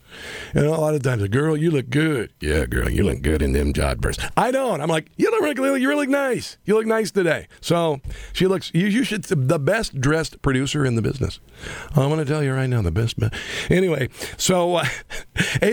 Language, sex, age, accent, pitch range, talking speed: English, male, 50-69, American, 120-160 Hz, 235 wpm